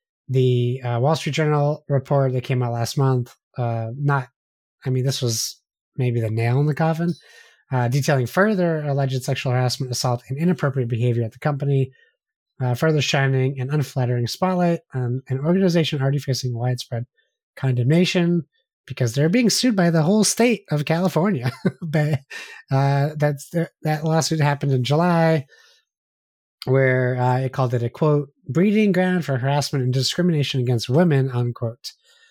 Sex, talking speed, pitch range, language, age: male, 150 wpm, 125-155 Hz, English, 20-39